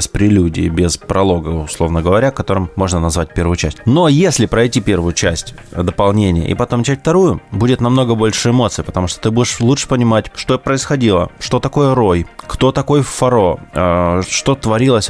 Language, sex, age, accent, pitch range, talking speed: Russian, male, 20-39, native, 90-110 Hz, 165 wpm